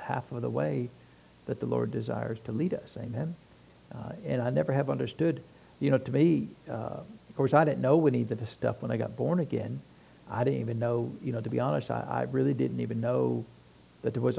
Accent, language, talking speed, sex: American, English, 230 wpm, male